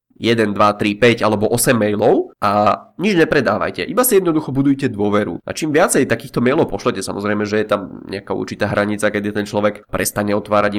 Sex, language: male, Czech